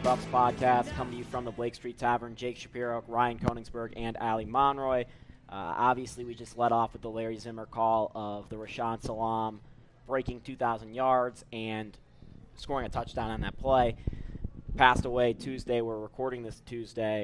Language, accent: English, American